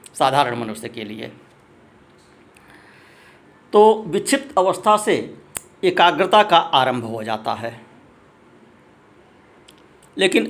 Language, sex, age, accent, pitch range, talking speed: Hindi, male, 60-79, native, 135-220 Hz, 85 wpm